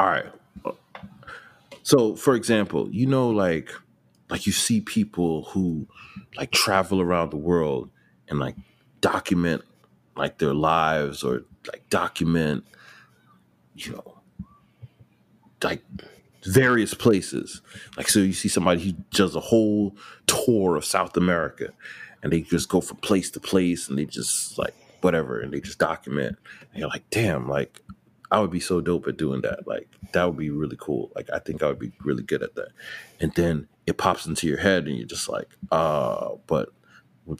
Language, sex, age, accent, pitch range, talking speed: English, male, 30-49, American, 80-115 Hz, 170 wpm